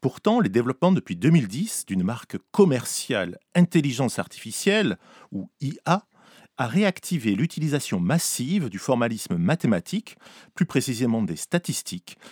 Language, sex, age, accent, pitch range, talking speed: French, male, 40-59, French, 120-185 Hz, 110 wpm